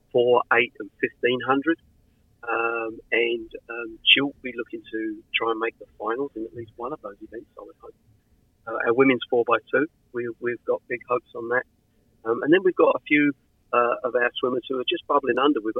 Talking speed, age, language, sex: 215 wpm, 50-69, English, male